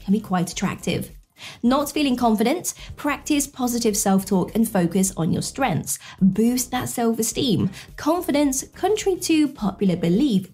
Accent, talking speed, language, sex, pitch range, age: British, 130 wpm, English, female, 195-270 Hz, 20-39